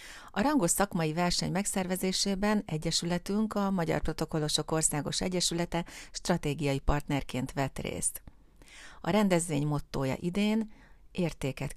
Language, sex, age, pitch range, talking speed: Hungarian, female, 40-59, 155-195 Hz, 100 wpm